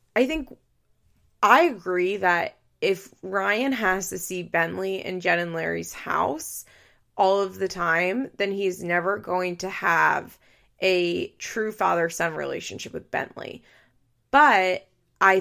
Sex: female